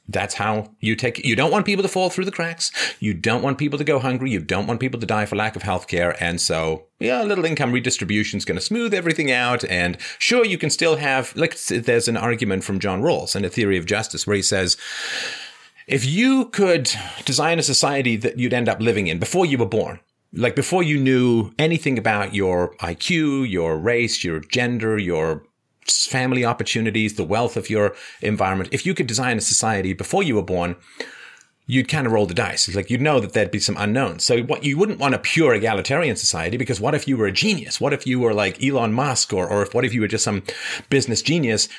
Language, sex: English, male